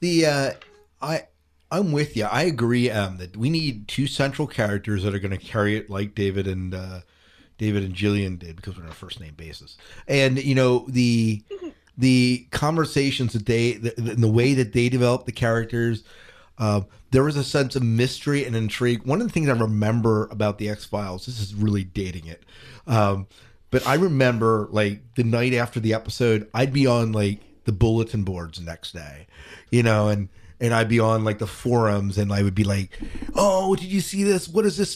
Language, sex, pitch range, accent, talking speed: English, male, 105-135 Hz, American, 205 wpm